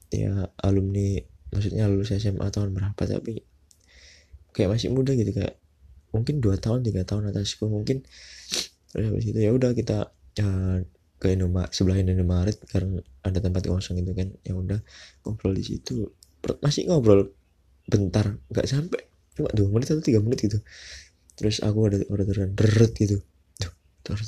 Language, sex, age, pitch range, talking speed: Indonesian, male, 20-39, 90-110 Hz, 145 wpm